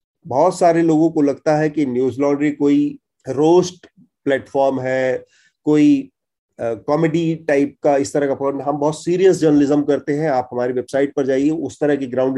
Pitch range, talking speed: 135-165 Hz, 170 wpm